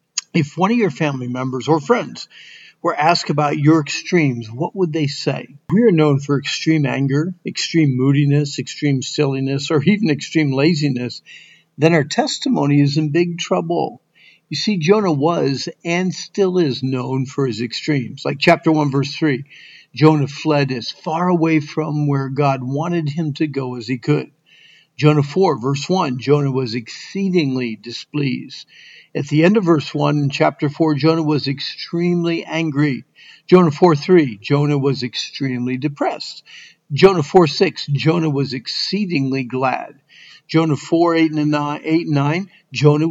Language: English